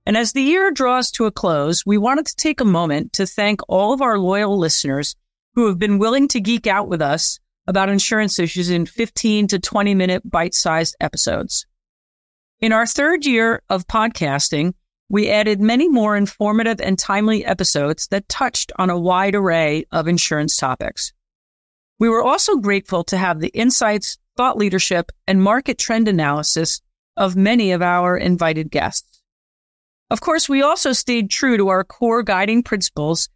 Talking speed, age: 170 wpm, 40-59